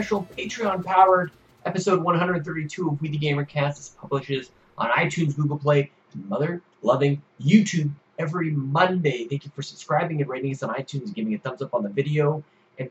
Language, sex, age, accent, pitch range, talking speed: English, male, 30-49, American, 140-185 Hz, 165 wpm